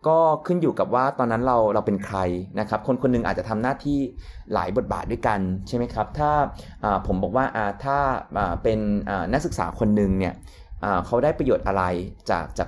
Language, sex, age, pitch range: Thai, male, 20-39, 95-130 Hz